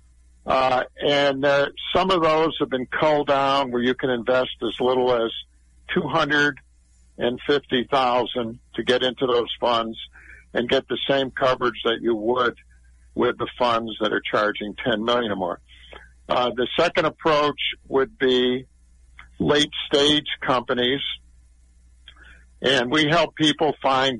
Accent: American